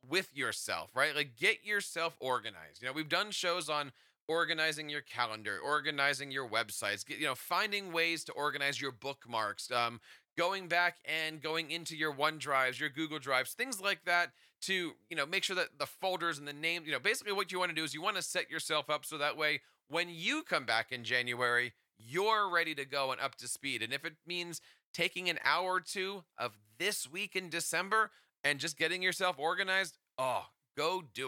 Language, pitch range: English, 135-170 Hz